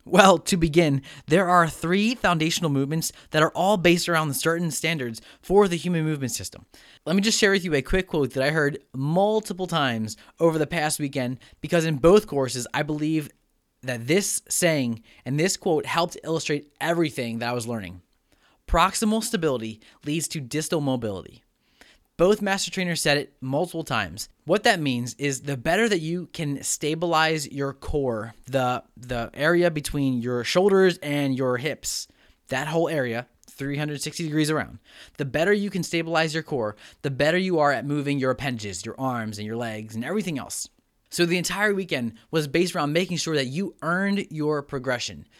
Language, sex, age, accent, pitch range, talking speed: English, male, 20-39, American, 130-170 Hz, 175 wpm